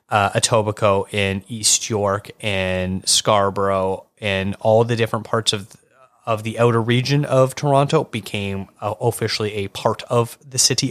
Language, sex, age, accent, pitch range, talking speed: English, male, 30-49, American, 100-120 Hz, 150 wpm